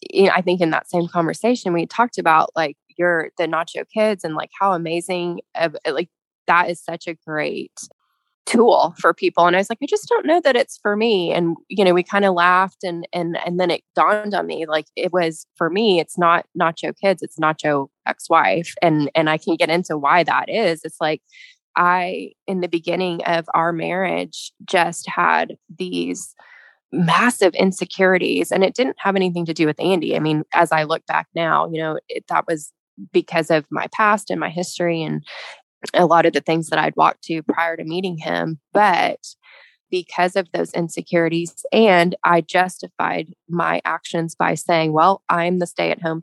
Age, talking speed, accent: 20-39, 195 wpm, American